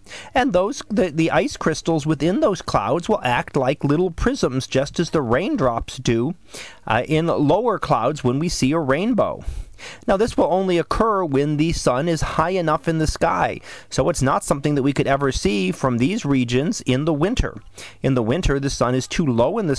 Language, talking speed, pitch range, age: English, 205 wpm, 125-170 Hz, 30-49